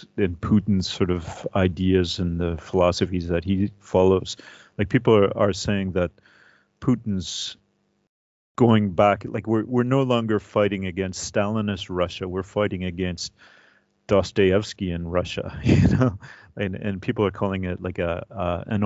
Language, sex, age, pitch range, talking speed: English, male, 40-59, 95-110 Hz, 150 wpm